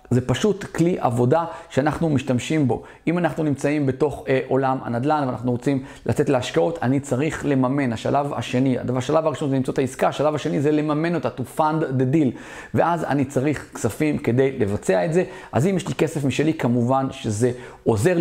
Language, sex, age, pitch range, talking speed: Hebrew, male, 30-49, 125-155 Hz, 180 wpm